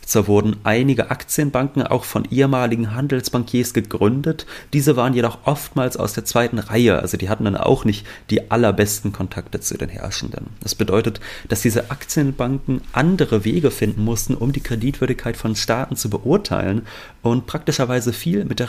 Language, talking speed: German, 160 wpm